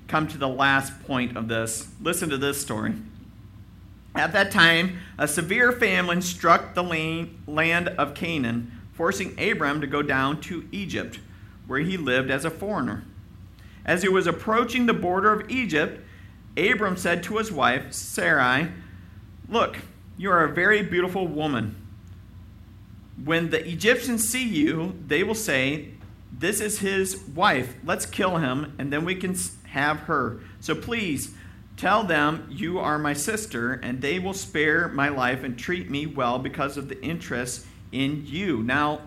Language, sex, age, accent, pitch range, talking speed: English, male, 50-69, American, 120-180 Hz, 155 wpm